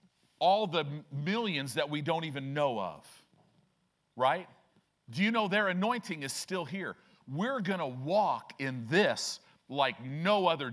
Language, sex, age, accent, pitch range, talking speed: English, male, 50-69, American, 140-195 Hz, 145 wpm